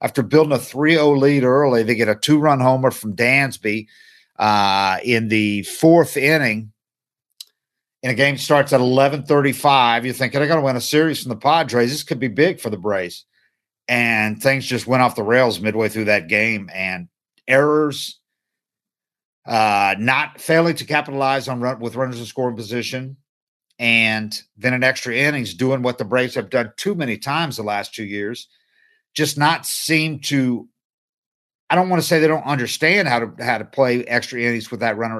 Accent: American